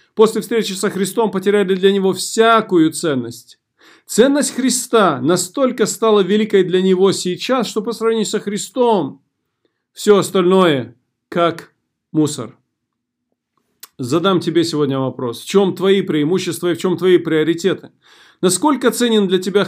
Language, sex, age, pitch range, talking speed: Russian, male, 40-59, 155-200 Hz, 130 wpm